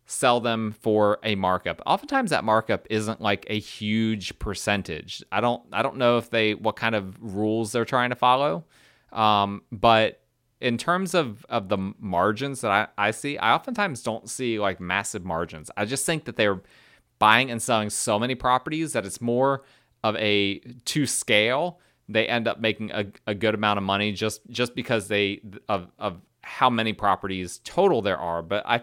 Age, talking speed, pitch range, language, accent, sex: 30-49, 185 wpm, 105-120 Hz, English, American, male